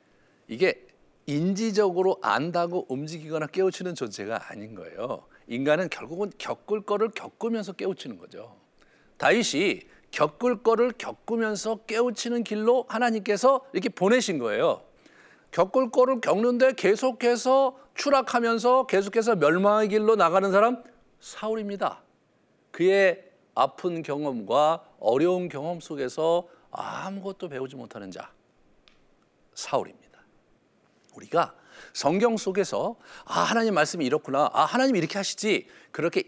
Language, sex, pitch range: Korean, male, 185-240 Hz